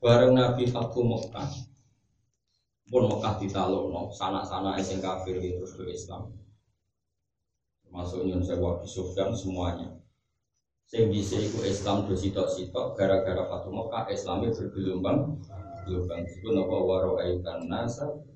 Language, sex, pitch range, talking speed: Indonesian, male, 95-125 Hz, 125 wpm